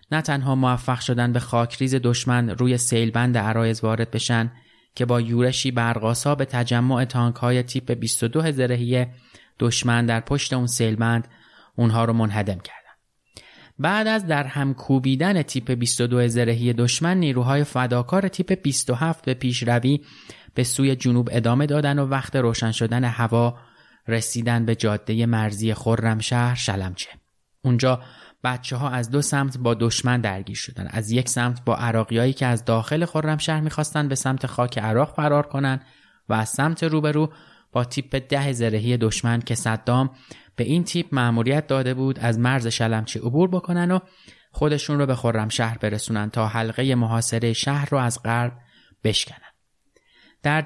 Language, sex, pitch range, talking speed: Persian, male, 115-140 Hz, 150 wpm